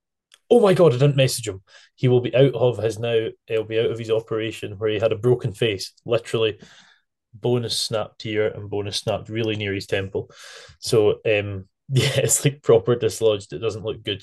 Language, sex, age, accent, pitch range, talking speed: English, male, 10-29, British, 110-140 Hz, 205 wpm